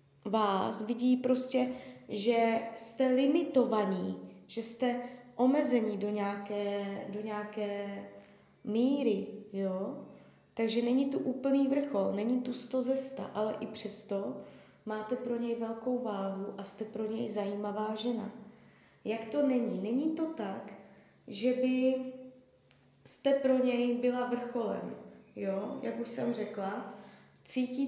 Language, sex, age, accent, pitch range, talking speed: Czech, female, 20-39, native, 205-250 Hz, 125 wpm